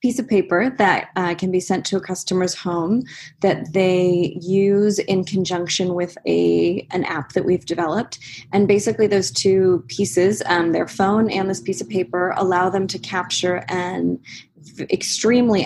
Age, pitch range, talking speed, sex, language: 20-39, 175-195 Hz, 165 wpm, female, English